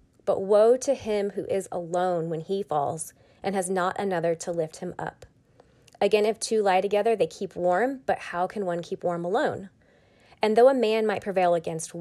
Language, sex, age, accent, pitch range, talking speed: English, female, 20-39, American, 175-215 Hz, 200 wpm